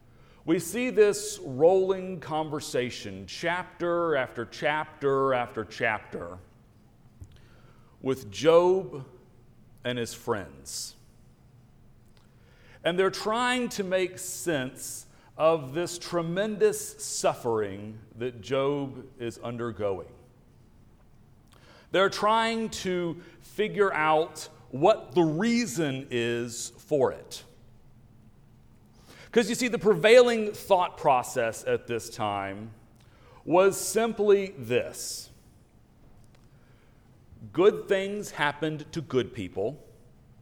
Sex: male